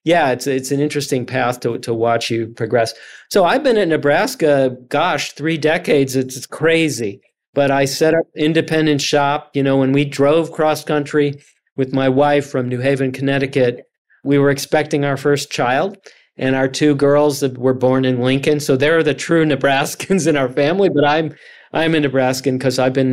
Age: 40-59